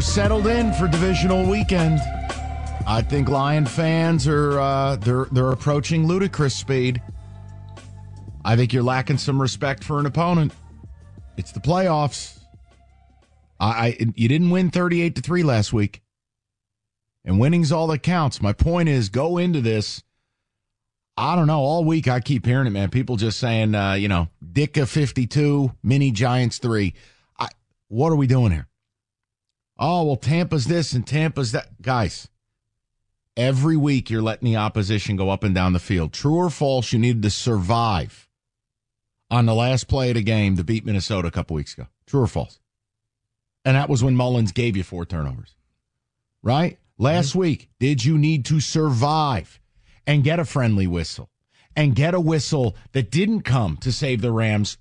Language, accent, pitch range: English, American, 105-145 Hz